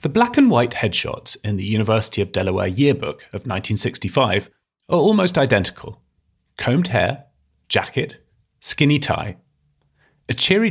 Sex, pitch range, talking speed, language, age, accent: male, 95-135 Hz, 120 wpm, English, 30-49, British